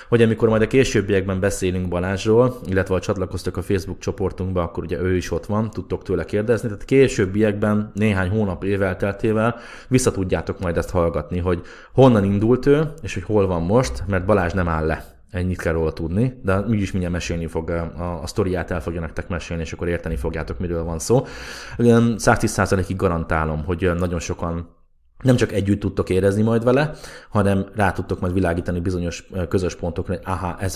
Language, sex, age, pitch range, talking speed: Hungarian, male, 20-39, 85-100 Hz, 185 wpm